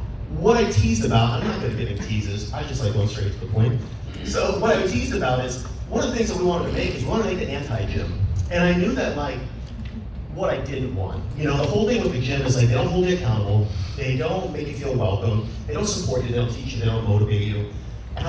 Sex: male